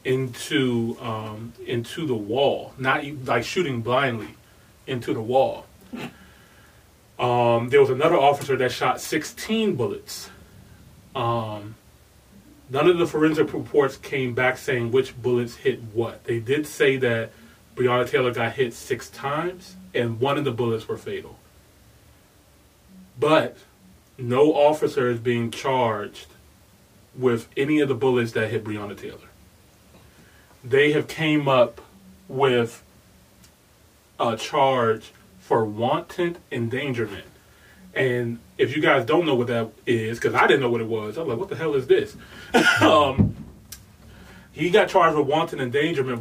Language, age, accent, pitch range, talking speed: English, 30-49, American, 115-140 Hz, 140 wpm